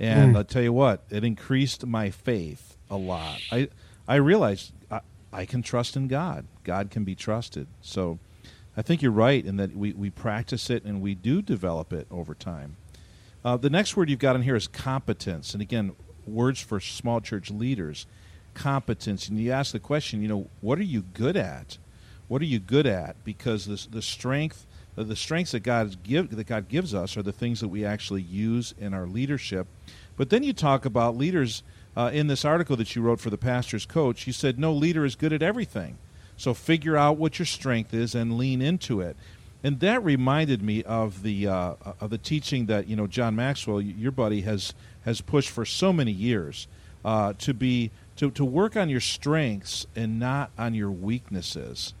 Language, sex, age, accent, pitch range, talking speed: English, male, 50-69, American, 100-130 Hz, 195 wpm